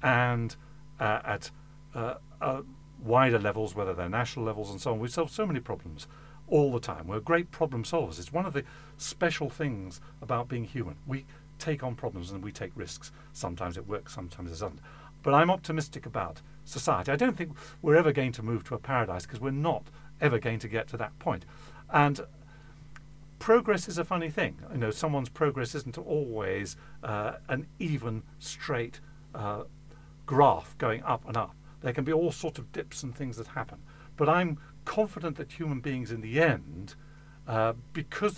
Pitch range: 120-155 Hz